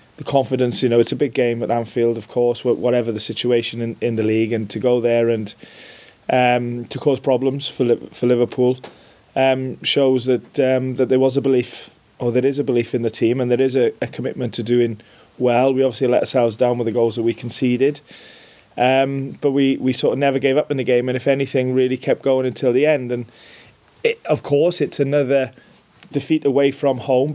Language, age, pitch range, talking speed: English, 20-39, 125-135 Hz, 215 wpm